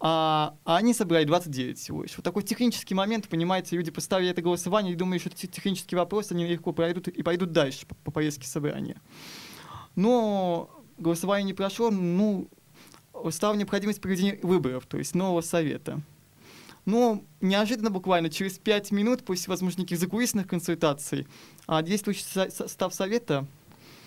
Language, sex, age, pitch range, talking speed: Russian, male, 20-39, 165-200 Hz, 140 wpm